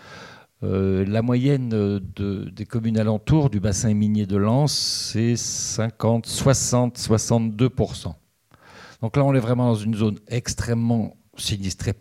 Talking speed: 125 wpm